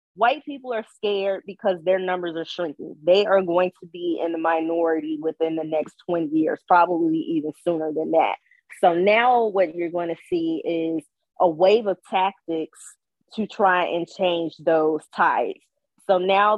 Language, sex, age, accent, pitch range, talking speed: English, female, 20-39, American, 160-195 Hz, 170 wpm